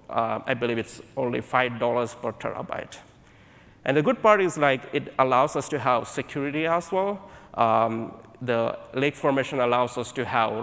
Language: English